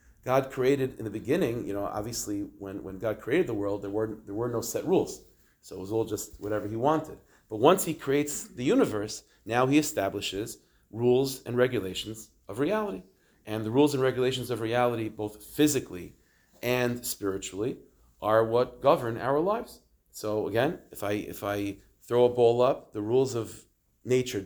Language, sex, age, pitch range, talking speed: English, male, 40-59, 105-130 Hz, 180 wpm